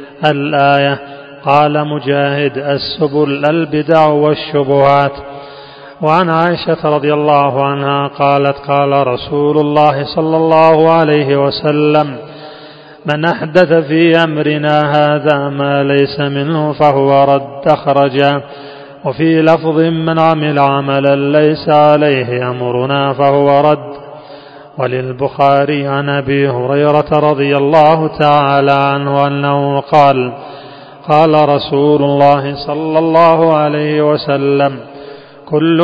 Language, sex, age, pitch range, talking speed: Arabic, male, 30-49, 140-155 Hz, 95 wpm